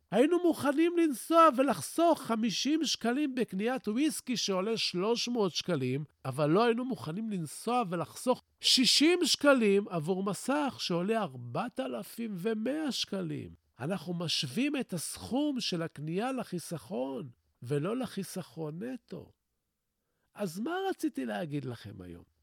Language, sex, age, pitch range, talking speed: Hebrew, male, 50-69, 145-230 Hz, 105 wpm